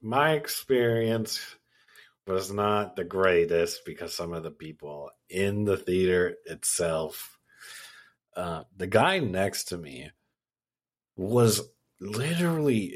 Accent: American